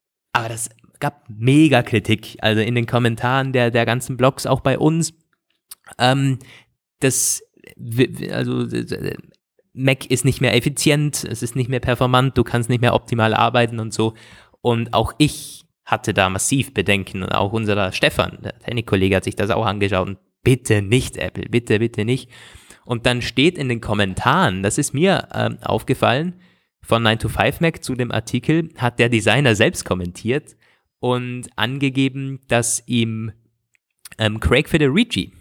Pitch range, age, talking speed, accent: 110-130 Hz, 20-39, 155 wpm, German